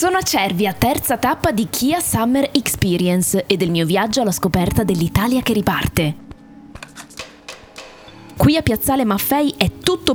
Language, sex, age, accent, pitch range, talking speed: Italian, female, 20-39, native, 180-250 Hz, 140 wpm